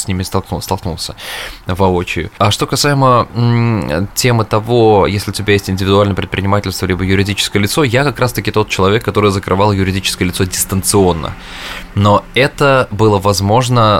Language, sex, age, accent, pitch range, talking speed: Russian, male, 20-39, native, 90-105 Hz, 140 wpm